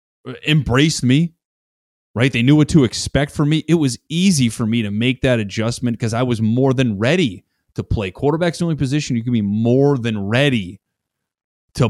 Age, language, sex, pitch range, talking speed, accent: 30-49, English, male, 105-125 Hz, 190 wpm, American